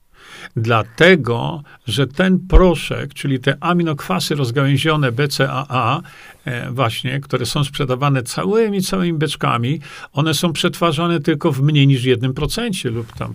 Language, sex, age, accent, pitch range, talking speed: Polish, male, 50-69, native, 130-170 Hz, 115 wpm